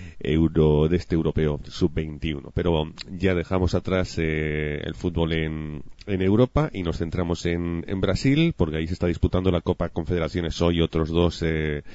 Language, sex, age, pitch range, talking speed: English, male, 30-49, 80-95 Hz, 170 wpm